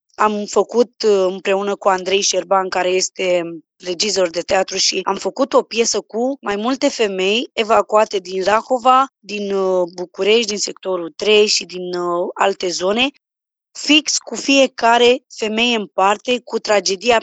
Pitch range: 195-245 Hz